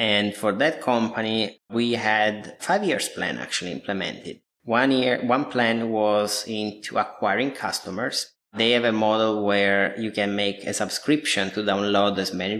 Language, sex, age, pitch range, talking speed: English, male, 20-39, 100-115 Hz, 155 wpm